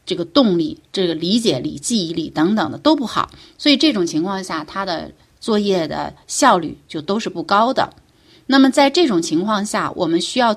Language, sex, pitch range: Chinese, female, 180-260 Hz